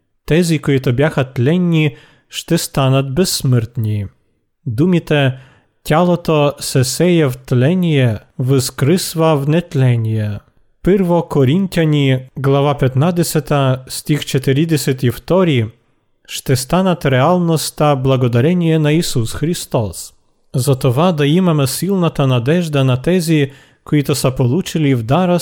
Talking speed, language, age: 95 wpm, Bulgarian, 40-59